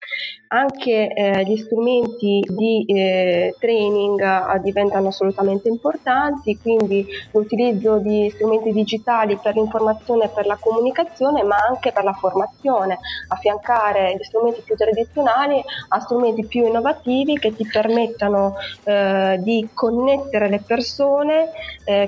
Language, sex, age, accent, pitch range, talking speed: Italian, female, 20-39, native, 205-235 Hz, 120 wpm